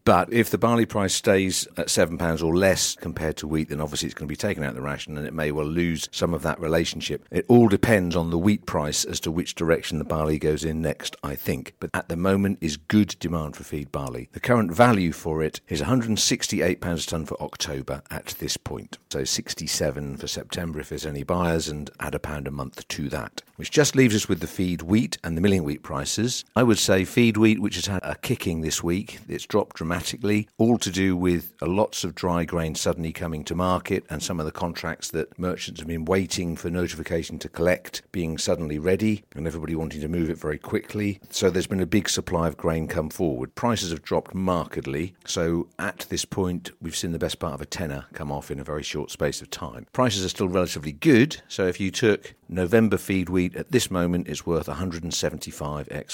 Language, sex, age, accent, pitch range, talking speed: English, male, 50-69, British, 80-95 Hz, 225 wpm